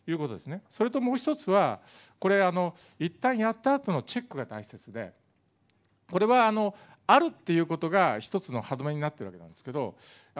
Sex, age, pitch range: male, 50-69, 110-175 Hz